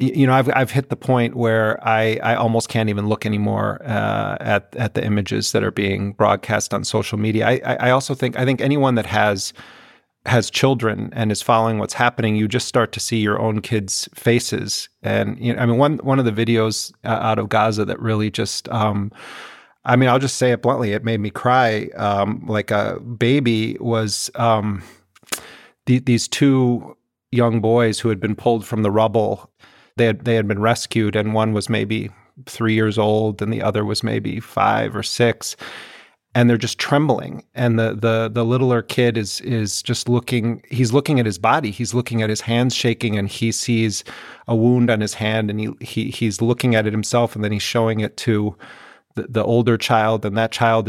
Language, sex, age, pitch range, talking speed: English, male, 30-49, 110-120 Hz, 205 wpm